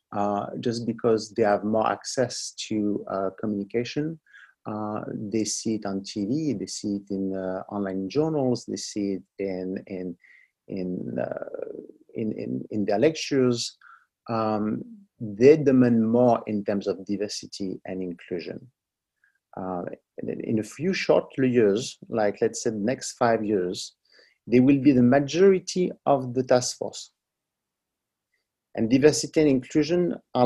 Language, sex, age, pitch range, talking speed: English, male, 50-69, 105-130 Hz, 145 wpm